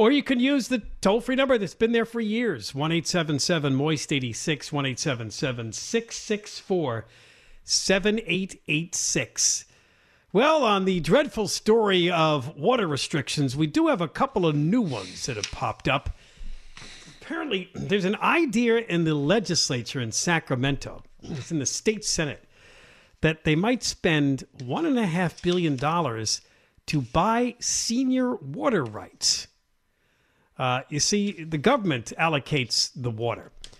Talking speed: 120 wpm